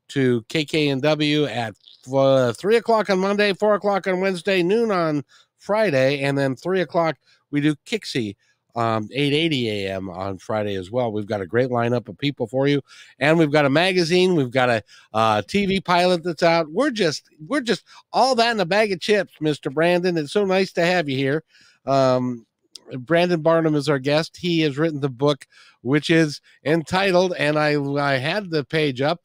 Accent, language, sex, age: American, English, male, 50-69